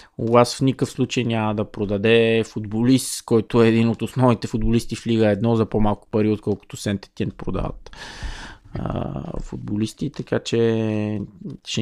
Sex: male